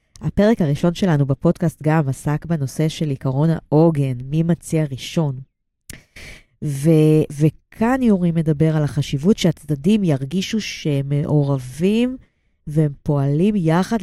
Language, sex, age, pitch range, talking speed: Hebrew, female, 30-49, 145-185 Hz, 105 wpm